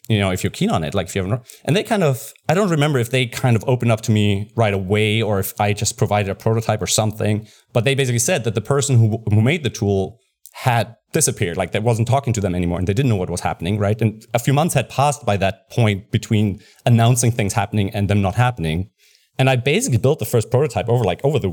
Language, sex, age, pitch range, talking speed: English, male, 30-49, 105-125 Hz, 260 wpm